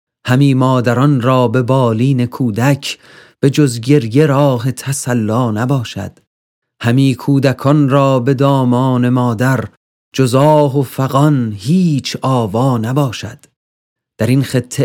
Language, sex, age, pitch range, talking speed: Persian, male, 40-59, 115-145 Hz, 105 wpm